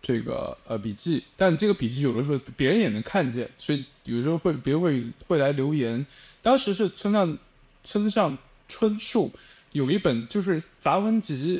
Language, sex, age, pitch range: Chinese, male, 20-39, 130-190 Hz